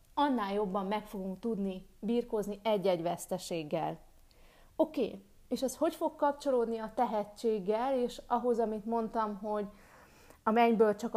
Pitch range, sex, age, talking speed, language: 195-250 Hz, female, 30-49, 130 wpm, Hungarian